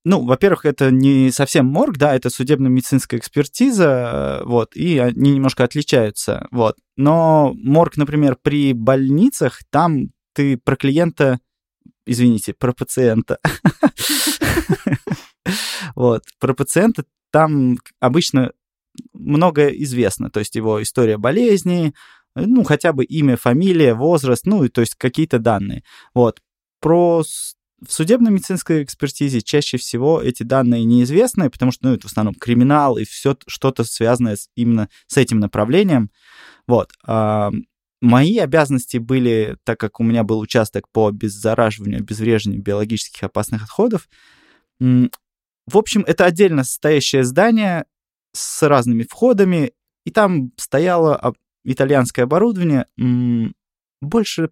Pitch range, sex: 120-155 Hz, male